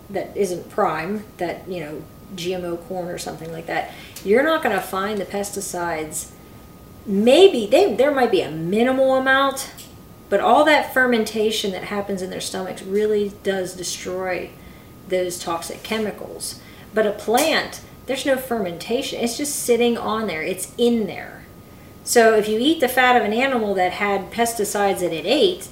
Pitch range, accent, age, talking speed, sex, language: 195-250 Hz, American, 40-59, 165 wpm, female, English